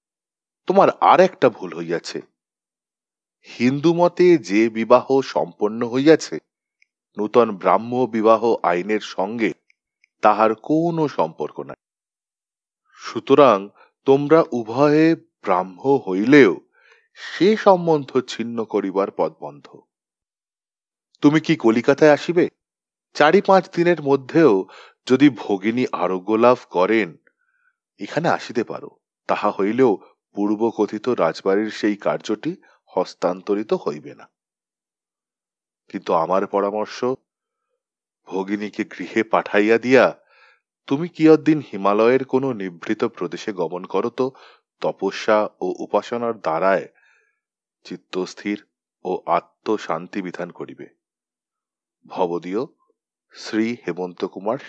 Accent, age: native, 30-49